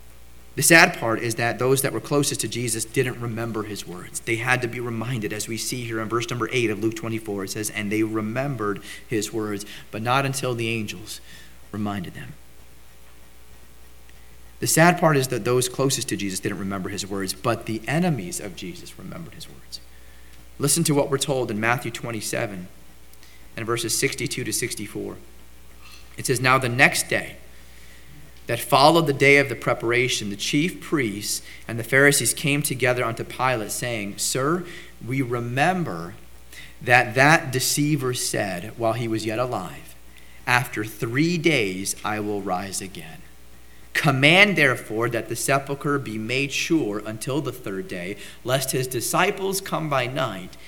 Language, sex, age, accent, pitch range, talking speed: English, male, 40-59, American, 95-135 Hz, 165 wpm